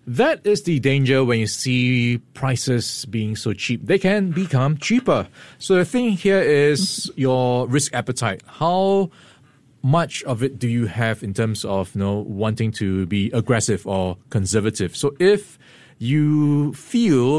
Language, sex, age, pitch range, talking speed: English, male, 20-39, 110-145 Hz, 150 wpm